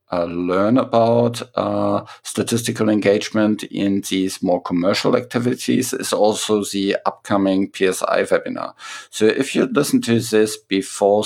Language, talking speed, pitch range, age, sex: English, 130 wpm, 95-120 Hz, 50-69, male